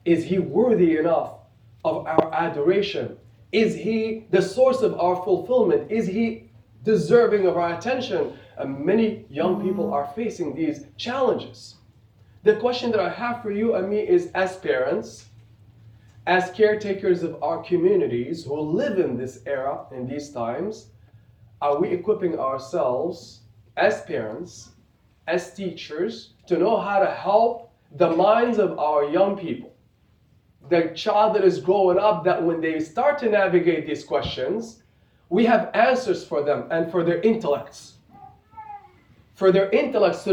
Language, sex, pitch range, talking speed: English, male, 165-220 Hz, 145 wpm